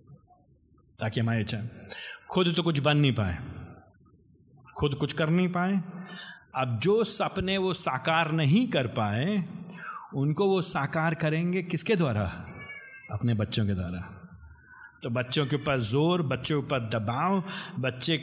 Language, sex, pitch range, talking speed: Hindi, male, 145-200 Hz, 135 wpm